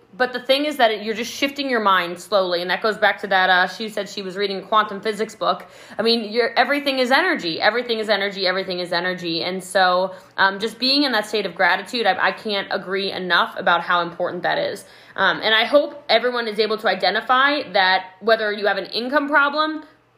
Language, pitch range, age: English, 190-250 Hz, 20-39